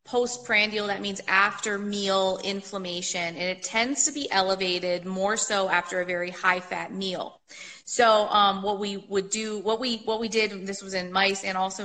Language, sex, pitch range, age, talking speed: English, female, 180-220 Hz, 30-49, 170 wpm